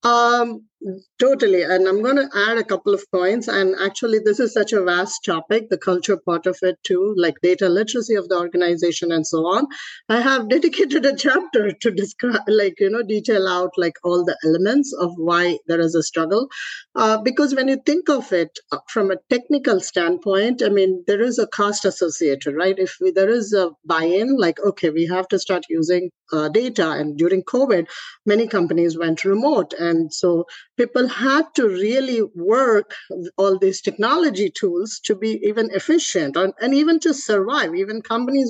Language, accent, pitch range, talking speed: English, Indian, 185-250 Hz, 190 wpm